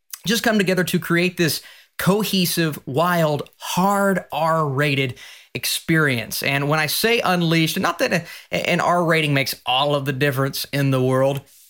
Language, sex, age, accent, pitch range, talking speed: English, male, 30-49, American, 150-195 Hz, 150 wpm